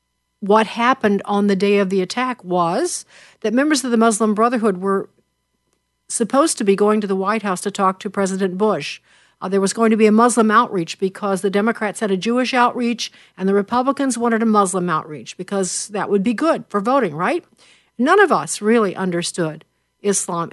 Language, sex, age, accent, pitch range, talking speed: English, female, 50-69, American, 190-230 Hz, 195 wpm